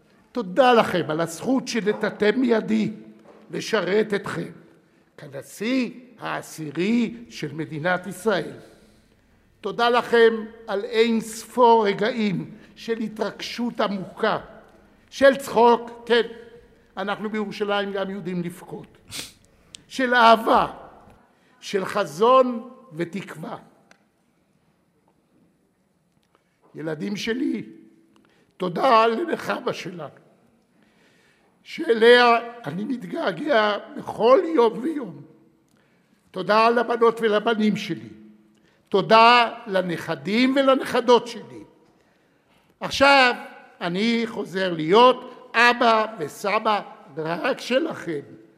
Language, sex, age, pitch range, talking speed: Hebrew, male, 60-79, 180-235 Hz, 75 wpm